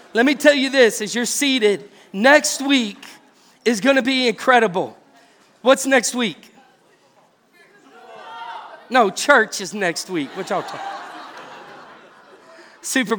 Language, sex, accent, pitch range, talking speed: English, male, American, 190-230 Hz, 120 wpm